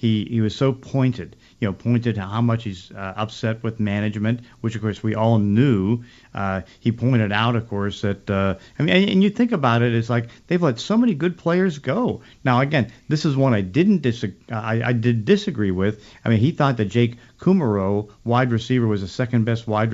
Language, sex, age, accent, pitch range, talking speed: English, male, 50-69, American, 105-120 Hz, 220 wpm